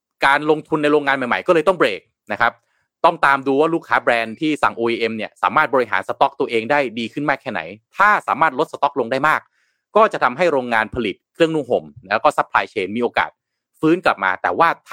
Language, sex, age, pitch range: Thai, male, 30-49, 120-175 Hz